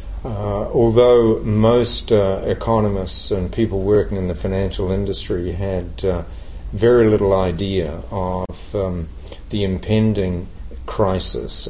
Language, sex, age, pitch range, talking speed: English, male, 50-69, 90-105 Hz, 115 wpm